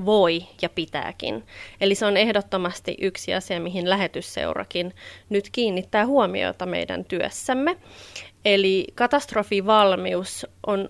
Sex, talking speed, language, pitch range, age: female, 105 wpm, Finnish, 185-220 Hz, 30-49